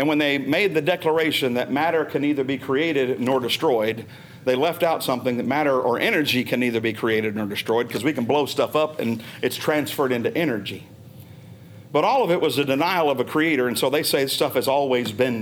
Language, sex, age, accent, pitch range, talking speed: English, male, 50-69, American, 130-195 Hz, 220 wpm